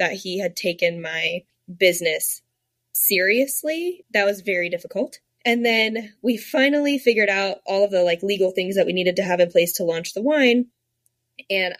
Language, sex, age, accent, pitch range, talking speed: English, female, 10-29, American, 170-210 Hz, 180 wpm